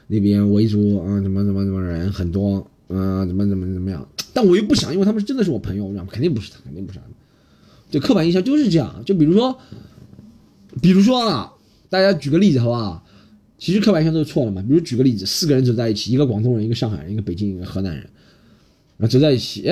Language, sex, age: Chinese, male, 20-39